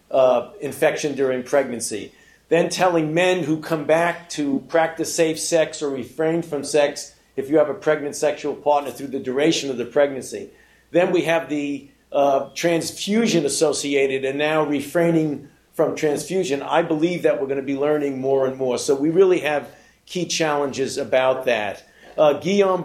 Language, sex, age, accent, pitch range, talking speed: English, male, 50-69, American, 140-165 Hz, 165 wpm